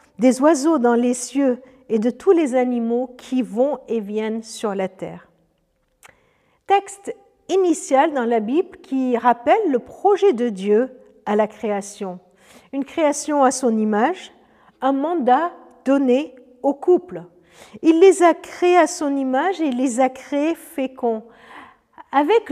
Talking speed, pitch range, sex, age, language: 145 wpm, 235-315 Hz, female, 50-69, French